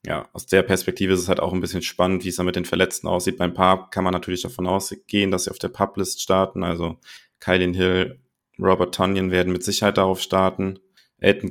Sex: male